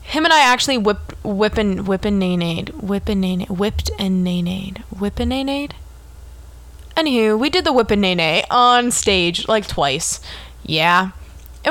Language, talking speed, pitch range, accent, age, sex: English, 170 wpm, 190-255 Hz, American, 20-39, female